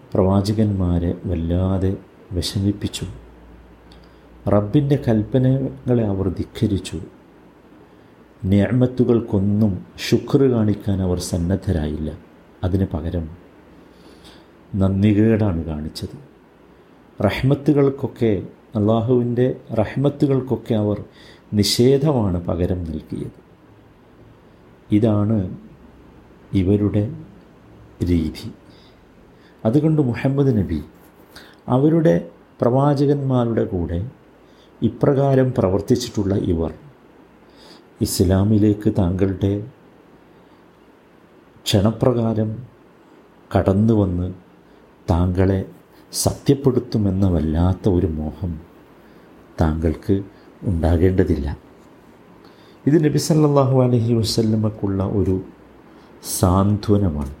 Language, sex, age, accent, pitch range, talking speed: Malayalam, male, 50-69, native, 90-120 Hz, 50 wpm